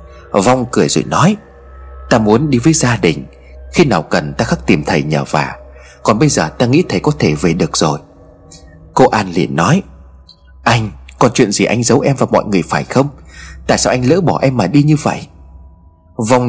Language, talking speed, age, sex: Vietnamese, 210 wpm, 30-49, male